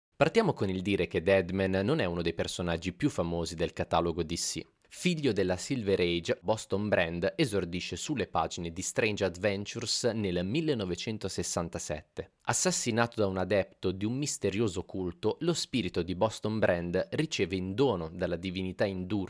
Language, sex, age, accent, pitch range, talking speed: Italian, male, 30-49, native, 85-110 Hz, 150 wpm